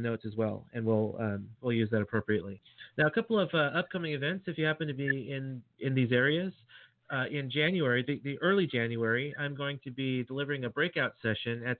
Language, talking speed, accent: English, 215 wpm, American